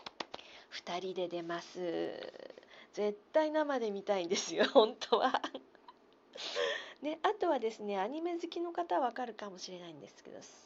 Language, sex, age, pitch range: Japanese, female, 40-59, 190-300 Hz